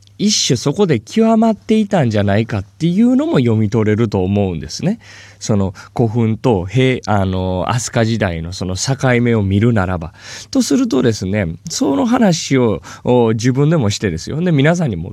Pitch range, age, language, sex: 100-160 Hz, 20-39, Japanese, male